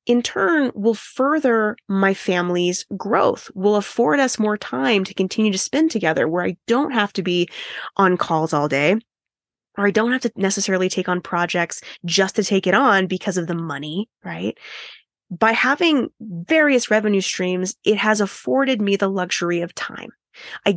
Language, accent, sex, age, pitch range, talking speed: English, American, female, 20-39, 180-230 Hz, 175 wpm